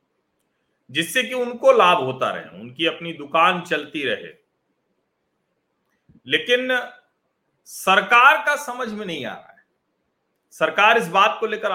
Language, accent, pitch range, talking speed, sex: Hindi, native, 145-210 Hz, 130 wpm, male